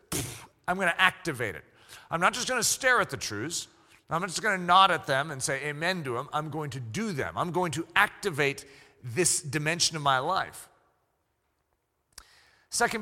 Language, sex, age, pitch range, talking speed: English, male, 40-59, 140-195 Hz, 195 wpm